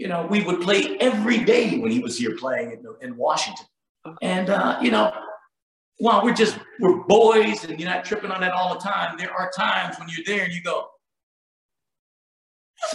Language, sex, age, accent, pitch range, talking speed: English, male, 50-69, American, 165-240 Hz, 200 wpm